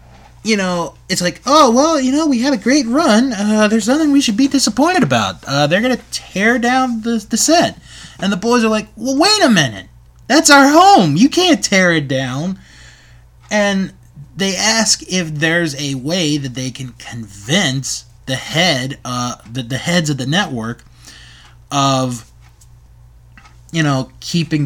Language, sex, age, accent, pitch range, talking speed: English, male, 20-39, American, 120-195 Hz, 175 wpm